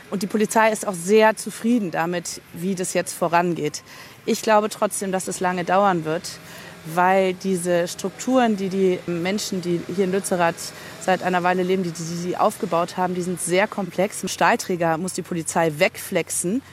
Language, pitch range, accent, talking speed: German, 175-220 Hz, German, 170 wpm